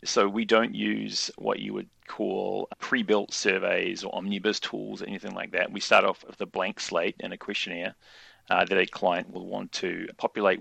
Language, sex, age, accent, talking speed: English, male, 30-49, Australian, 200 wpm